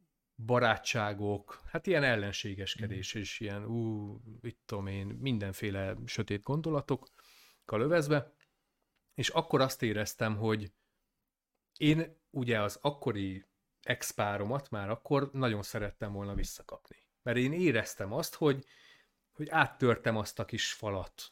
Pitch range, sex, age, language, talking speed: 105-135 Hz, male, 30-49, Hungarian, 115 wpm